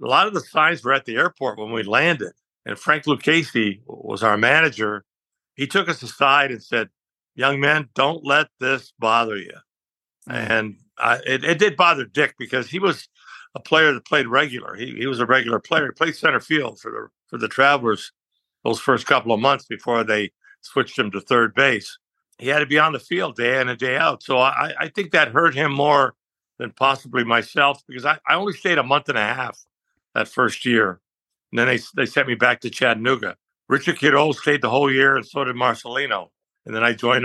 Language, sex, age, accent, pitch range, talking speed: English, male, 60-79, American, 115-145 Hz, 210 wpm